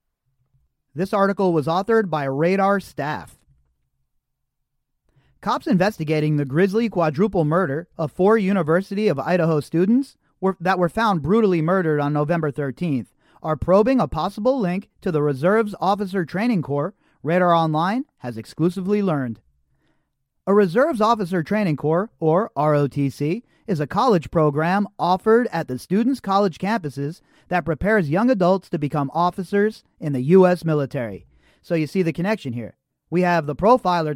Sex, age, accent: male, 40-59, American